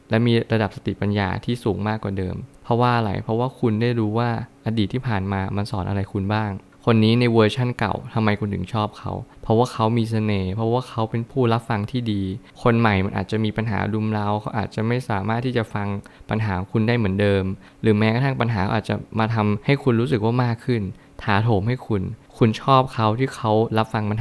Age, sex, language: 20-39, male, Thai